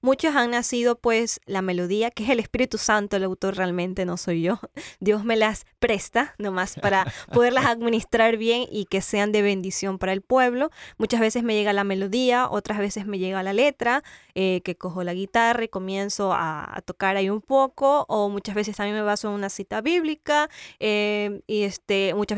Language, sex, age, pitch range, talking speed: Spanish, female, 10-29, 200-255 Hz, 195 wpm